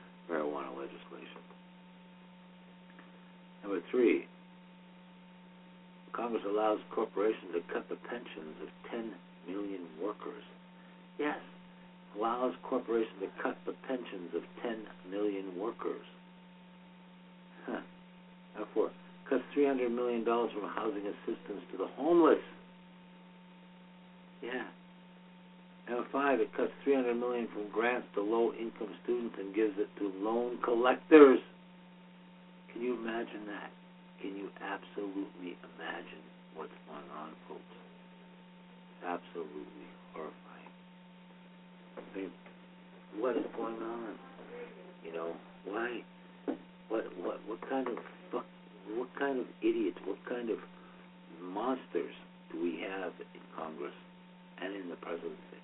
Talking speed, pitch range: 115 wpm, 115-180 Hz